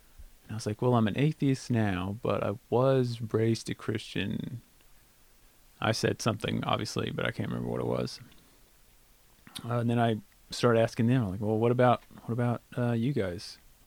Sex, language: male, English